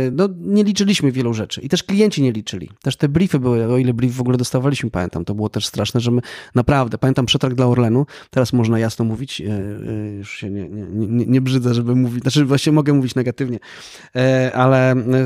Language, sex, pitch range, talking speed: Polish, male, 120-135 Hz, 200 wpm